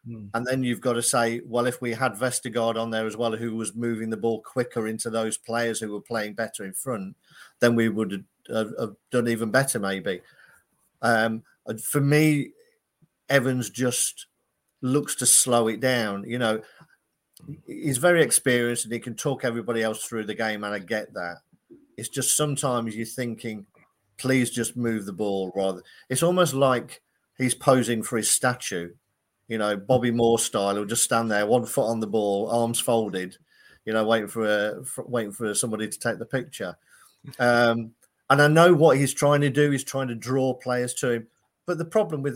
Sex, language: male, English